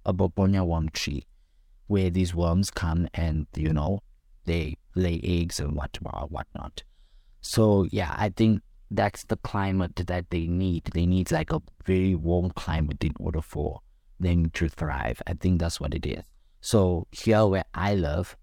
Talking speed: 165 wpm